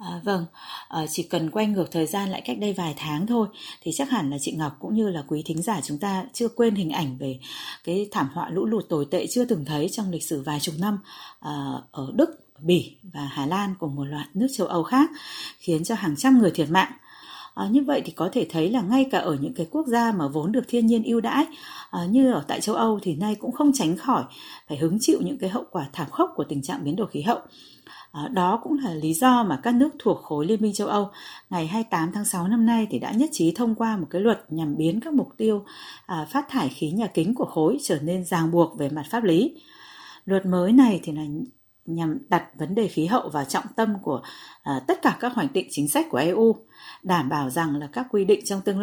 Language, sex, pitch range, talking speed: Vietnamese, female, 160-230 Hz, 245 wpm